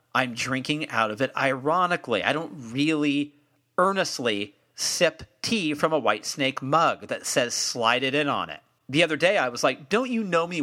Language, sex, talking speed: English, male, 190 wpm